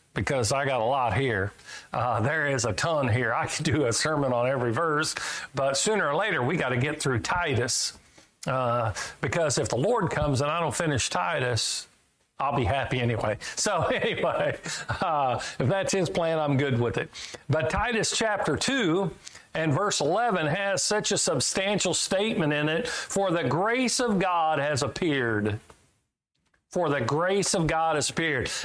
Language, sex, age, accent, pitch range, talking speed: English, male, 50-69, American, 140-185 Hz, 175 wpm